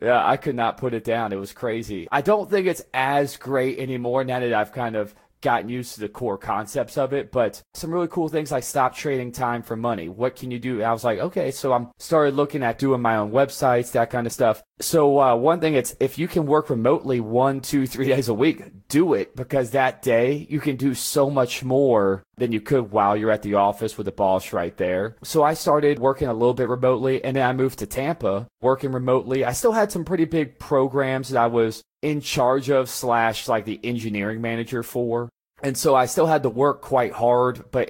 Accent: American